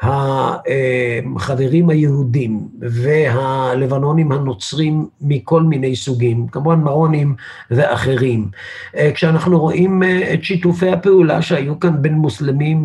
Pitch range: 130-160 Hz